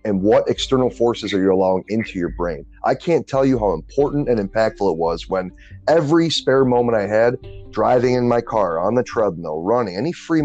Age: 30-49